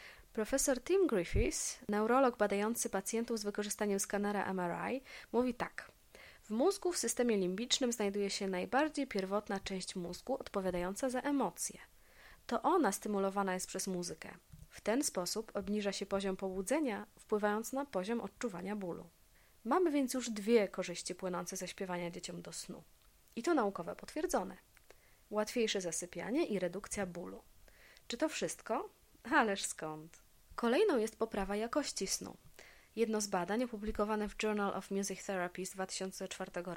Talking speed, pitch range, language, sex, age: 140 wpm, 195-250 Hz, Polish, female, 20-39